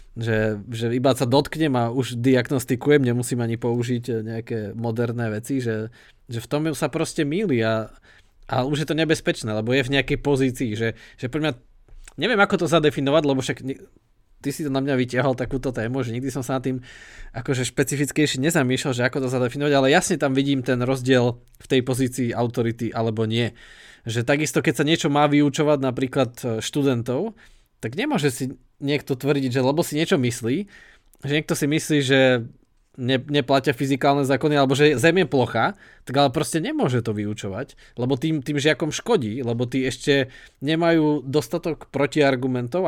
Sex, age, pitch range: male, 20-39, 120-150 Hz